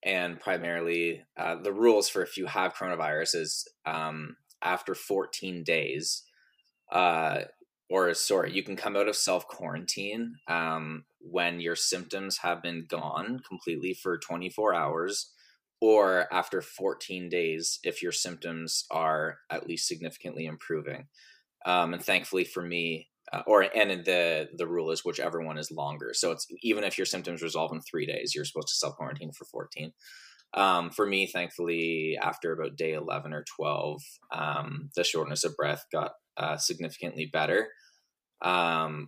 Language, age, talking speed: English, 20-39, 150 wpm